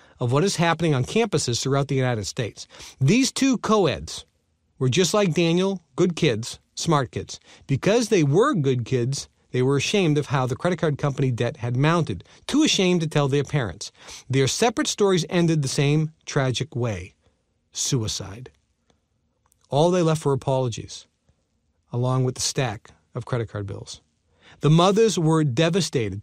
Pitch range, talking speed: 110-140 Hz, 160 wpm